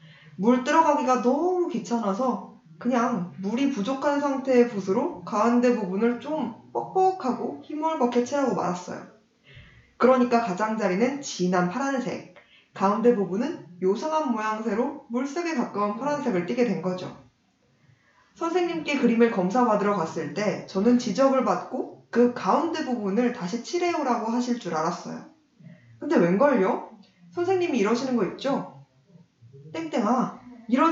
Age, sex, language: 20-39, female, Korean